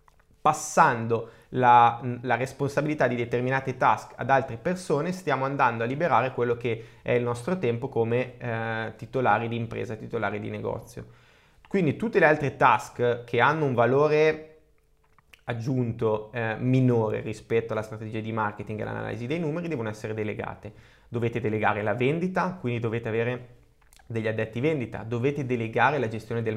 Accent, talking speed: native, 150 wpm